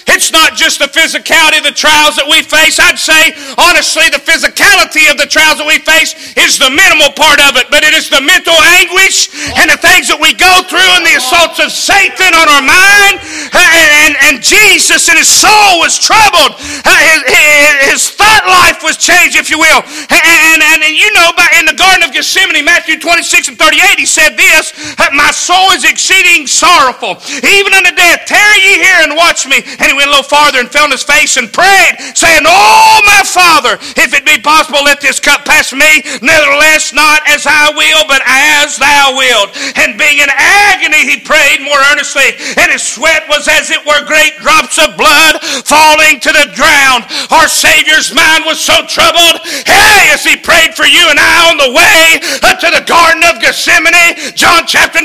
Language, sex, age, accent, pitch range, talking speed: English, male, 40-59, American, 295-345 Hz, 195 wpm